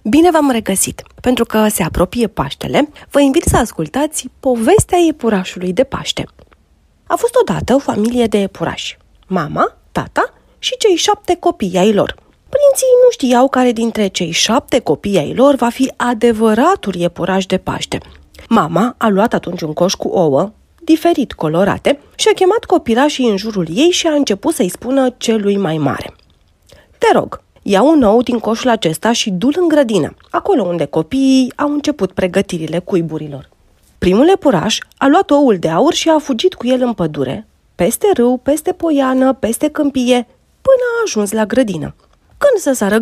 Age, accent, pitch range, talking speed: 30-49, native, 195-305 Hz, 165 wpm